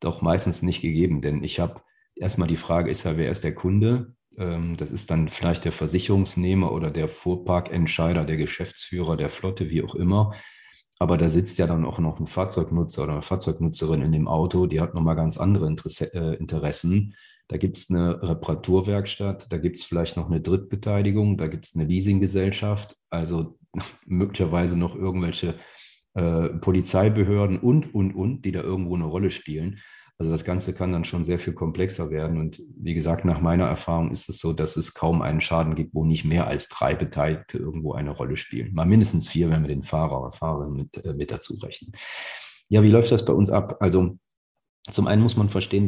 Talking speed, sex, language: 195 wpm, male, German